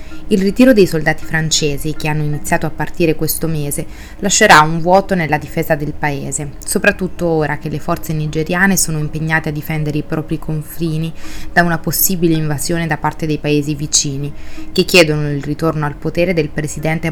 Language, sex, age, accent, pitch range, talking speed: Italian, female, 20-39, native, 150-175 Hz, 170 wpm